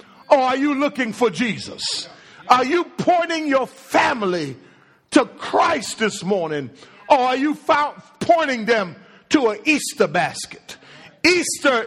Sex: male